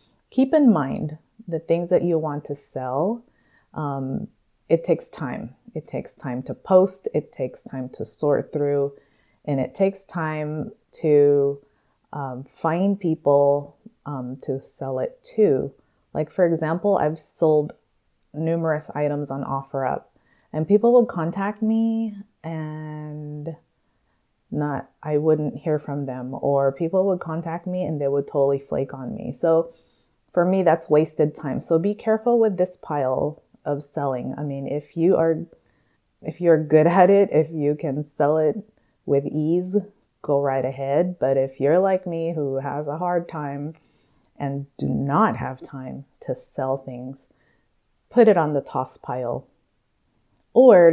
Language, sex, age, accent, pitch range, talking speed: English, female, 30-49, American, 140-175 Hz, 155 wpm